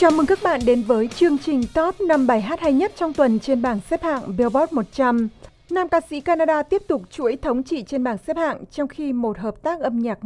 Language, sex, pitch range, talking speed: Vietnamese, female, 225-295 Hz, 245 wpm